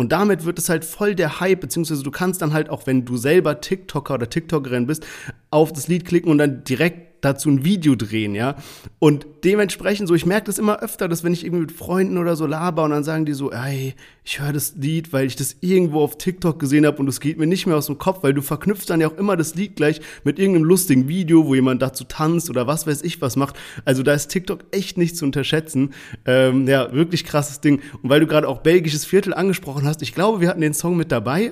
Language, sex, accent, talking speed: German, male, German, 250 wpm